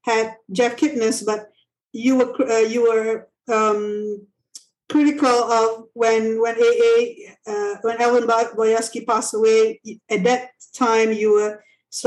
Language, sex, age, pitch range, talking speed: English, female, 50-69, 220-270 Hz, 135 wpm